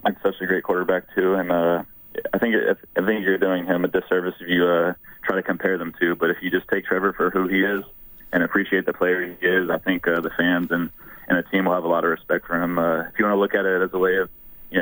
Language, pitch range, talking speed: English, 90-95 Hz, 290 wpm